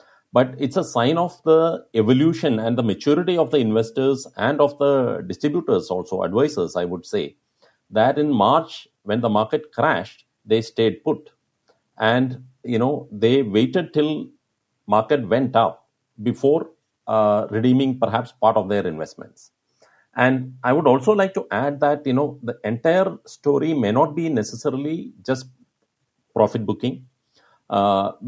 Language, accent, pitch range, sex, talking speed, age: English, Indian, 115-145 Hz, male, 150 wpm, 50-69